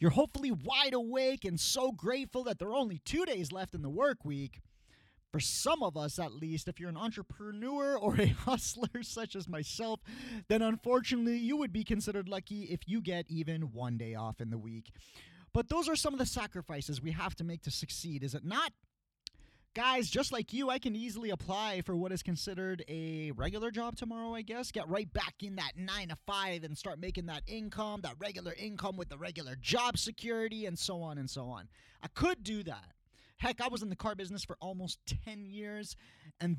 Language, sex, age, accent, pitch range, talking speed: English, male, 30-49, American, 160-230 Hz, 210 wpm